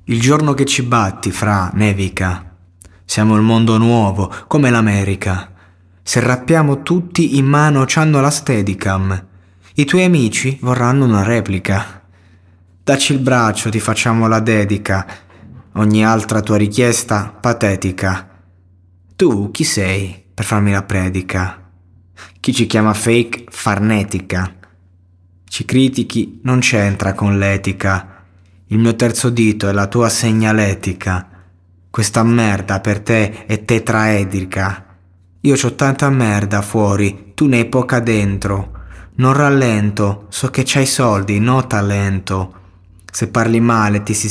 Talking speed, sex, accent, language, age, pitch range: 125 wpm, male, native, Italian, 20-39, 95-115 Hz